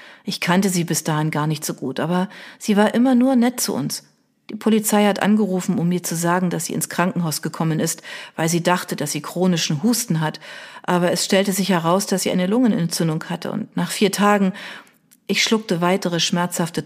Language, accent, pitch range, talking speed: German, German, 165-215 Hz, 205 wpm